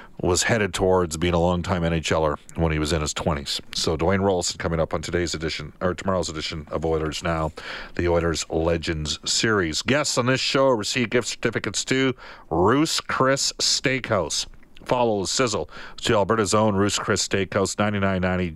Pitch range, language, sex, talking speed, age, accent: 85-115 Hz, English, male, 175 wpm, 50-69, American